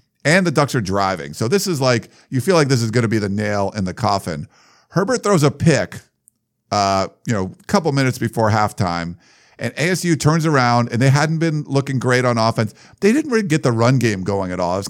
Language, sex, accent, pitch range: English, male, American, 115-155 Hz